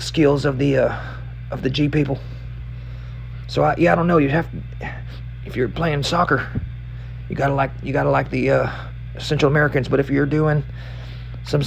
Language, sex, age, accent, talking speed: English, male, 40-59, American, 185 wpm